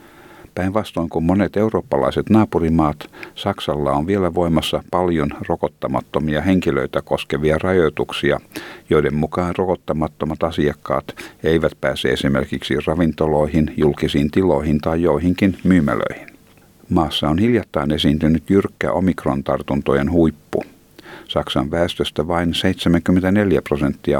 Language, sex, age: Finnish, male, 60-79